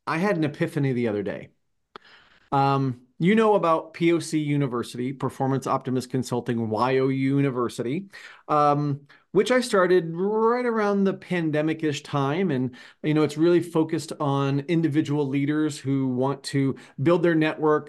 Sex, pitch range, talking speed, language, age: male, 135-170 Hz, 140 wpm, English, 40-59